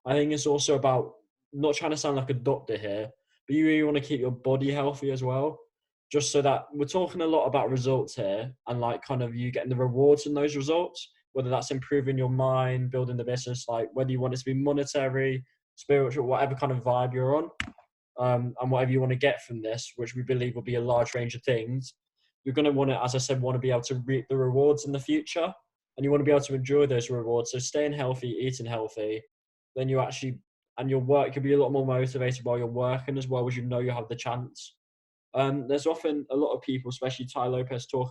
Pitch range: 125-140 Hz